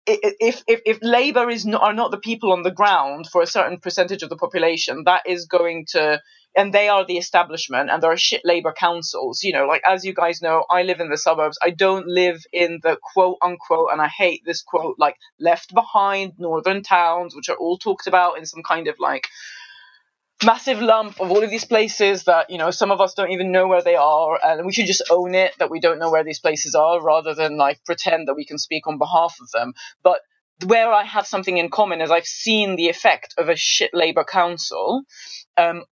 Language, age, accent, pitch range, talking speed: English, 20-39, British, 170-225 Hz, 230 wpm